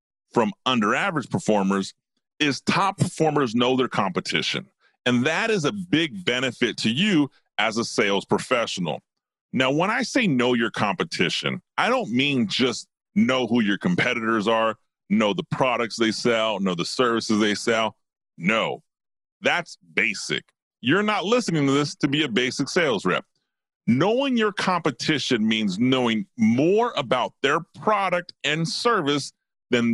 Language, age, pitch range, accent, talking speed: English, 30-49, 115-190 Hz, American, 145 wpm